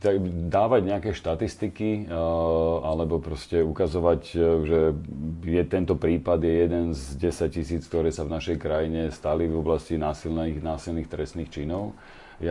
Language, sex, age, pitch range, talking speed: Slovak, male, 40-59, 80-85 Hz, 140 wpm